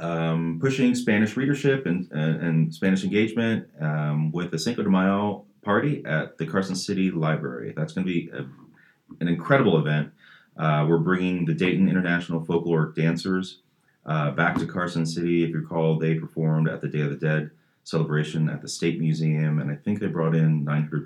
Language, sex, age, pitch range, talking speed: English, male, 30-49, 75-90 Hz, 180 wpm